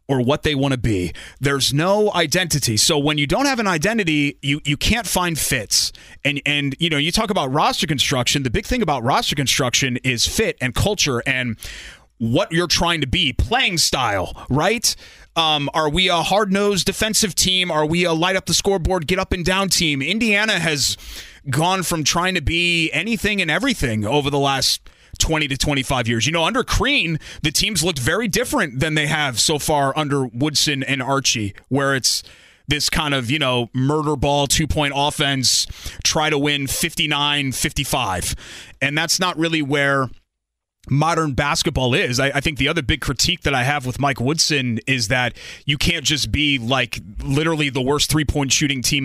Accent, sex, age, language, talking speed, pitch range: American, male, 30-49, English, 185 wpm, 130-160 Hz